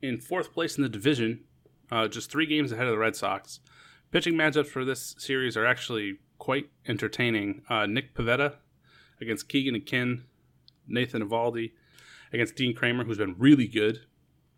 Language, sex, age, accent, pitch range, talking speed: English, male, 30-49, American, 110-135 Hz, 160 wpm